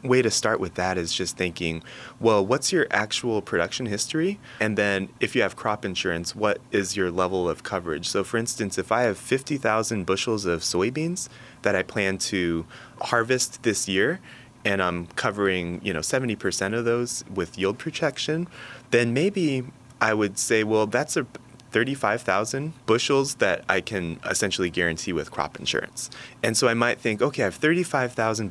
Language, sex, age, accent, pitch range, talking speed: English, male, 30-49, American, 95-125 Hz, 175 wpm